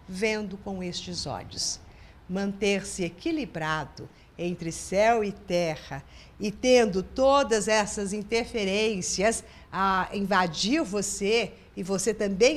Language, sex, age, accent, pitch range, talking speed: Portuguese, female, 50-69, Brazilian, 185-260 Hz, 100 wpm